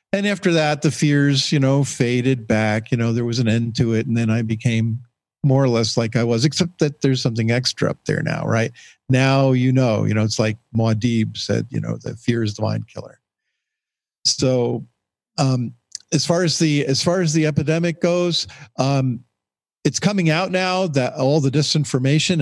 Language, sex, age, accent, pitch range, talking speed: English, male, 50-69, American, 115-155 Hz, 200 wpm